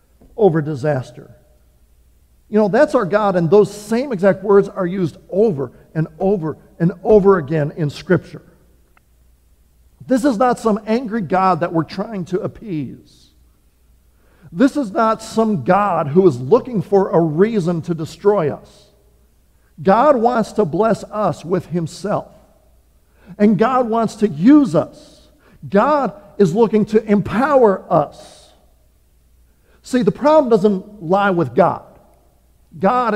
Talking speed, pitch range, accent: 135 wpm, 150-215 Hz, American